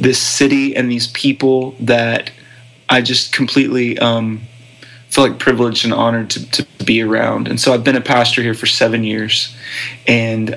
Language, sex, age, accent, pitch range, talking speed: English, male, 20-39, American, 120-135 Hz, 170 wpm